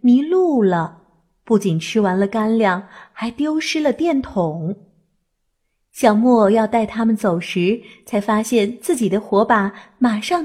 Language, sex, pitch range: Chinese, female, 190-255 Hz